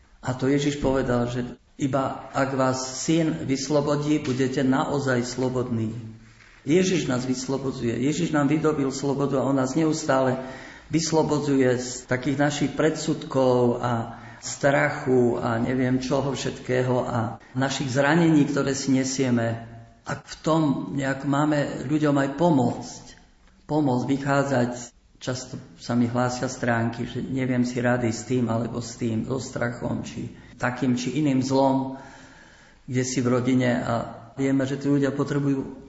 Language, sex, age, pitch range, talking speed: Slovak, male, 50-69, 125-140 Hz, 135 wpm